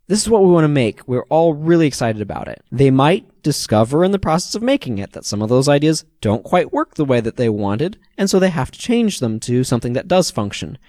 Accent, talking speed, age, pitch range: American, 260 wpm, 20-39, 125-165 Hz